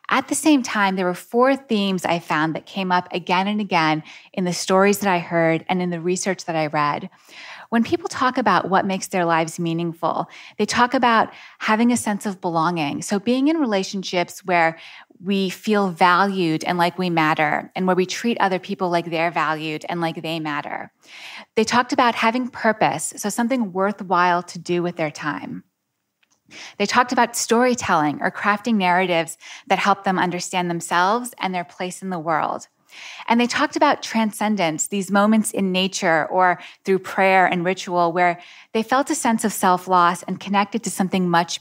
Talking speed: 185 wpm